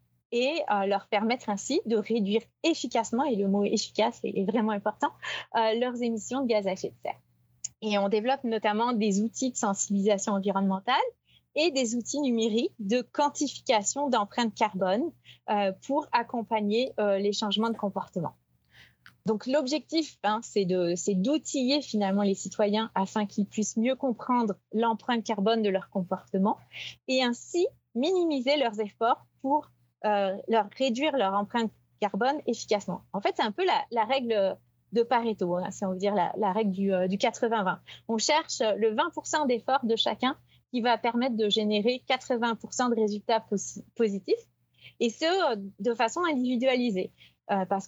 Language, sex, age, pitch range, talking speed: French, female, 30-49, 200-250 Hz, 160 wpm